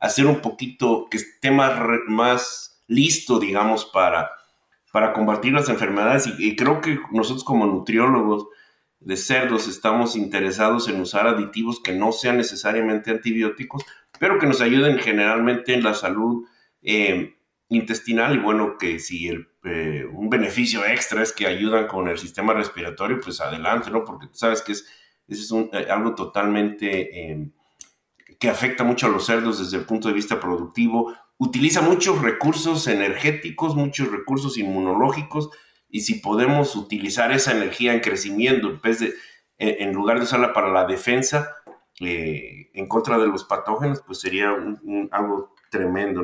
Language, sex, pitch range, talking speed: Spanish, male, 100-130 Hz, 155 wpm